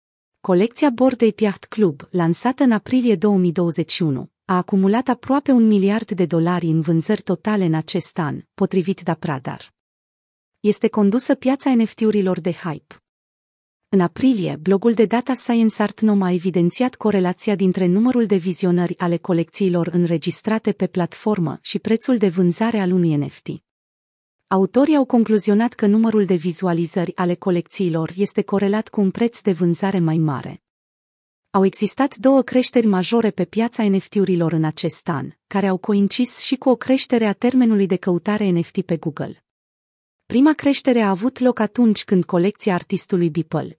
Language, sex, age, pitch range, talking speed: Romanian, female, 30-49, 175-225 Hz, 150 wpm